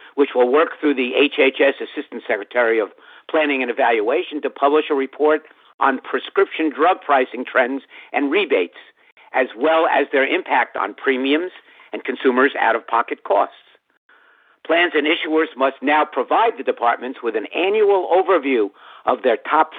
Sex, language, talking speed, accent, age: male, English, 150 wpm, American, 50-69